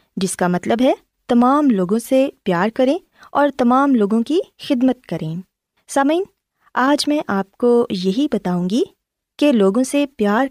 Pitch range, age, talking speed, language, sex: 190-280 Hz, 20-39, 155 wpm, Urdu, female